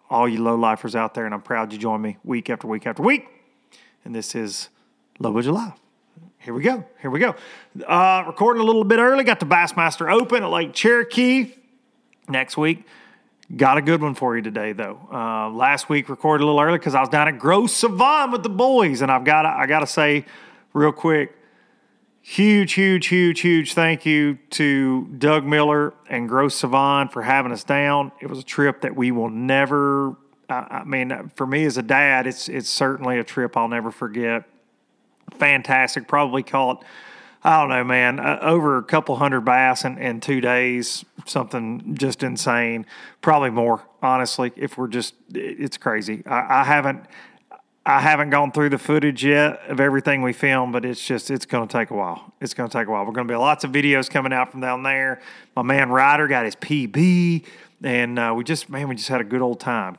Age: 30-49